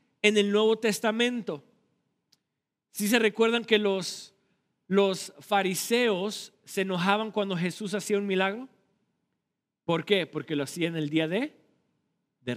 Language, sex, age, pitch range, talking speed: Spanish, male, 50-69, 160-220 Hz, 140 wpm